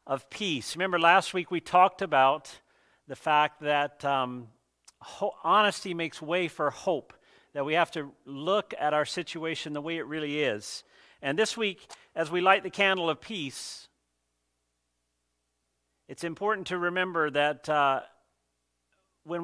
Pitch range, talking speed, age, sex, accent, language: 140-180 Hz, 150 wpm, 50-69, male, American, English